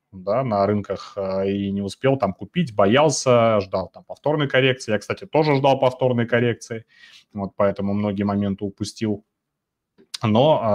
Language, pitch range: Russian, 100-125 Hz